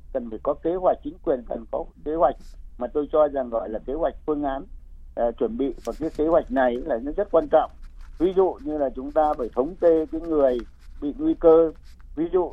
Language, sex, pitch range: Vietnamese, male, 120-165 Hz